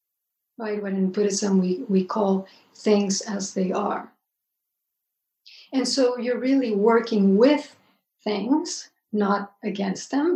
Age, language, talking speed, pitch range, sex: 50-69, English, 120 wpm, 200-255 Hz, female